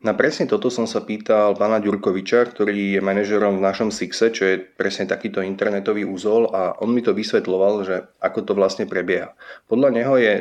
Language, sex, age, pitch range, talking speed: Slovak, male, 30-49, 95-115 Hz, 190 wpm